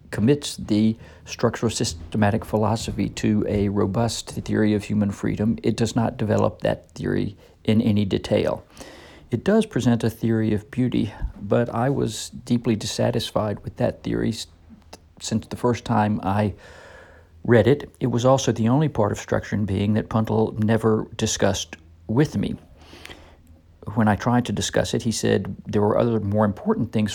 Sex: male